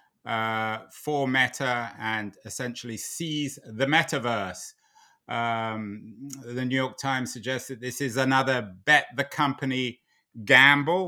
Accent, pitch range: British, 115-150 Hz